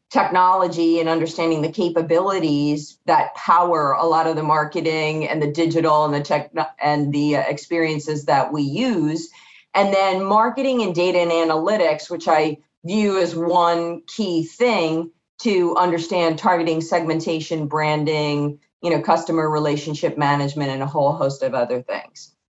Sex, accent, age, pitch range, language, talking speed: female, American, 40-59, 155-180 Hz, English, 145 wpm